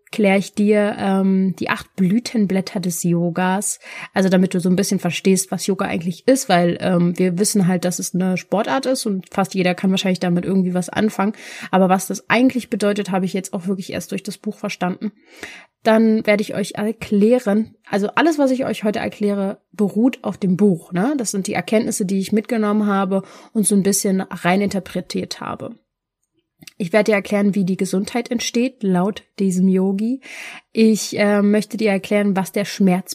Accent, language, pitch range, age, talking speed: German, German, 190-220 Hz, 30-49, 190 wpm